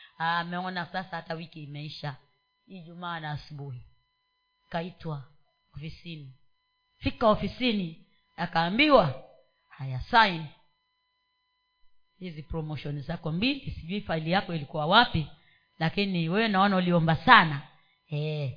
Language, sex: Swahili, female